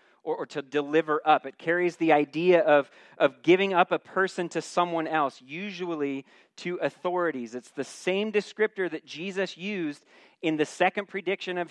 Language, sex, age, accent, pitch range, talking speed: English, male, 40-59, American, 120-175 Hz, 165 wpm